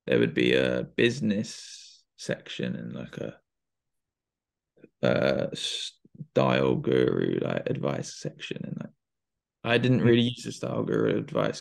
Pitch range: 110-120 Hz